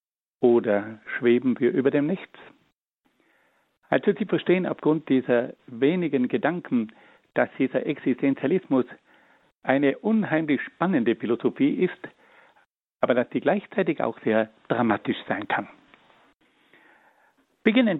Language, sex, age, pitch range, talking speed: German, male, 60-79, 125-205 Hz, 105 wpm